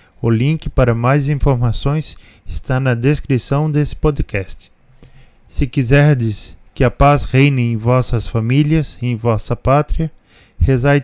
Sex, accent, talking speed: male, Brazilian, 130 wpm